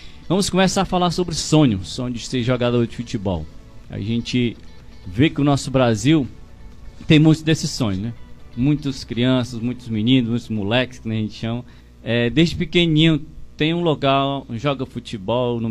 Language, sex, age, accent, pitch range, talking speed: Portuguese, male, 20-39, Brazilian, 120-150 Hz, 165 wpm